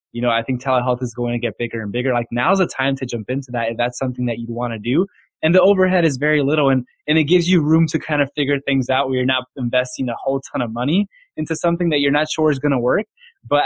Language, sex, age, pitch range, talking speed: English, male, 20-39, 120-150 Hz, 290 wpm